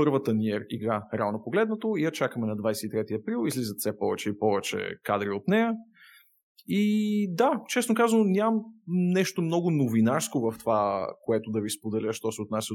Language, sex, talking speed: Bulgarian, male, 170 wpm